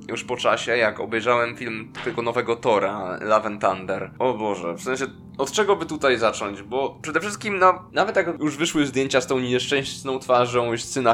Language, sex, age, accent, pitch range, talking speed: Polish, male, 20-39, native, 120-155 Hz, 195 wpm